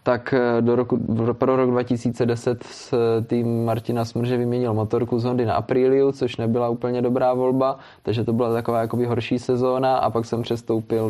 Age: 20-39